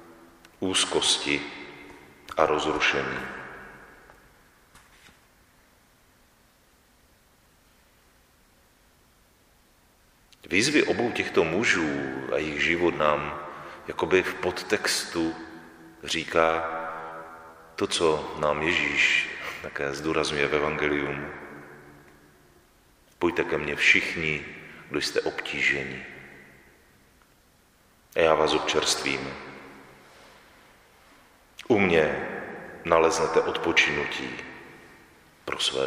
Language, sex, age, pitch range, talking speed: Czech, male, 40-59, 70-75 Hz, 65 wpm